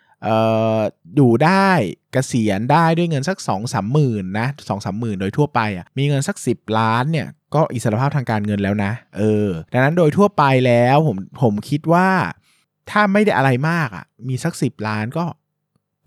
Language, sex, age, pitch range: Thai, male, 20-39, 110-150 Hz